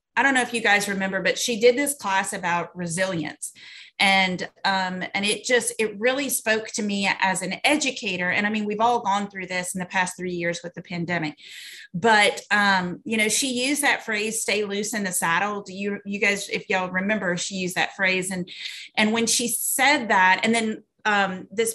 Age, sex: 30-49, female